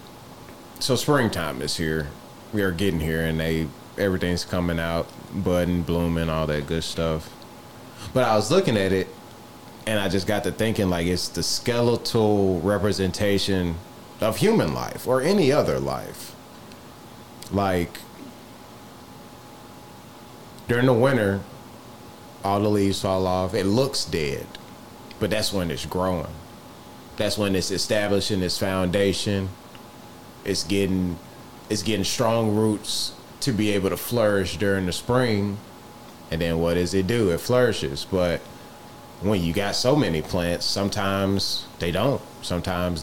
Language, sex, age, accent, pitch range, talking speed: English, male, 20-39, American, 85-105 Hz, 140 wpm